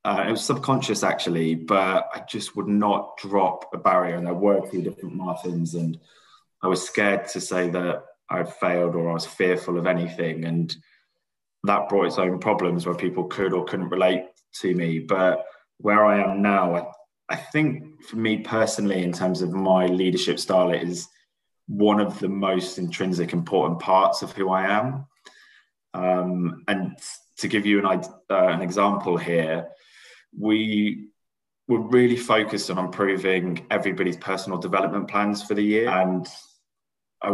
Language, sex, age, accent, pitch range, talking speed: English, male, 20-39, British, 90-105 Hz, 170 wpm